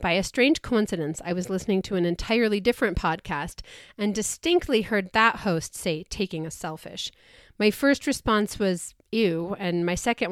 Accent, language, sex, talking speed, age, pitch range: American, English, female, 170 wpm, 30-49, 180-235 Hz